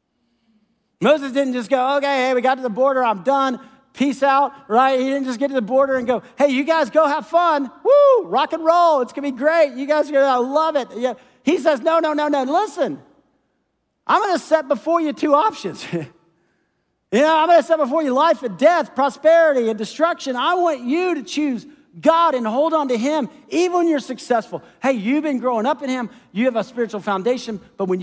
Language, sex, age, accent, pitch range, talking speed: English, male, 40-59, American, 225-295 Hz, 215 wpm